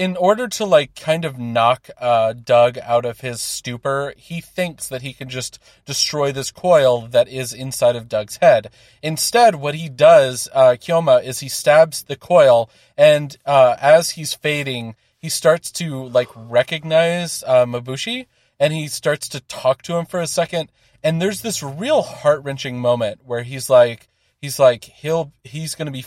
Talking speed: 175 wpm